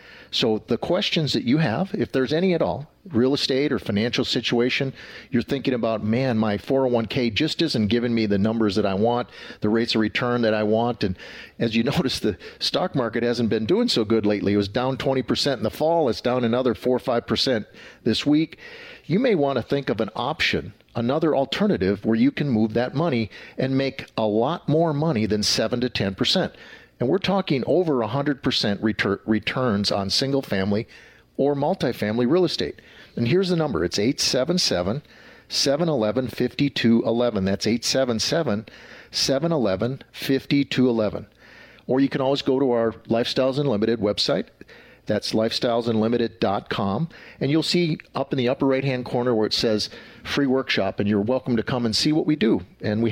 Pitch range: 110-140 Hz